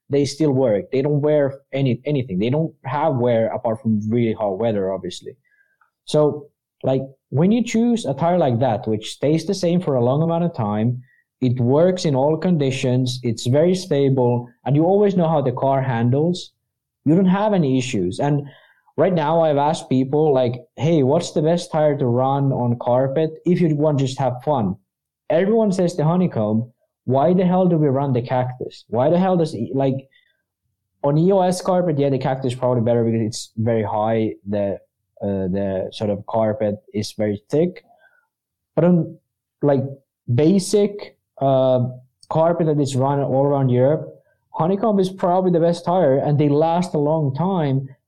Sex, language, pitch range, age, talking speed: male, English, 120-165 Hz, 20-39, 180 wpm